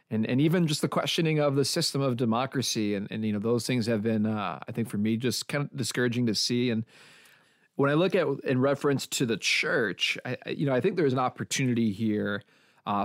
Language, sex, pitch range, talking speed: English, male, 110-140 Hz, 230 wpm